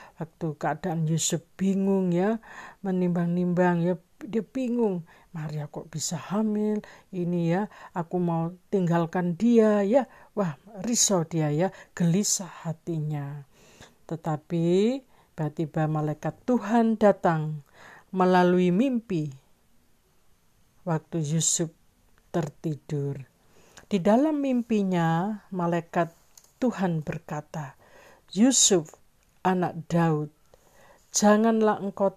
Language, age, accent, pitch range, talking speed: Indonesian, 50-69, native, 165-205 Hz, 90 wpm